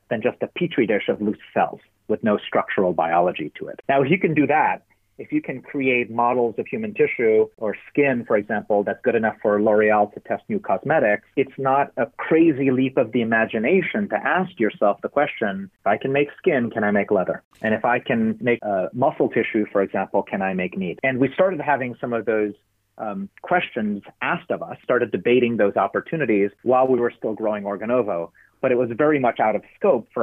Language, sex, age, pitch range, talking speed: German, male, 30-49, 110-150 Hz, 215 wpm